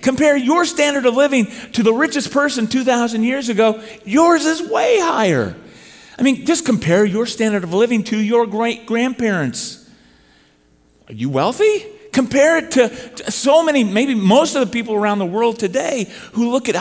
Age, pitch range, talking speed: 40-59, 170-250 Hz, 175 wpm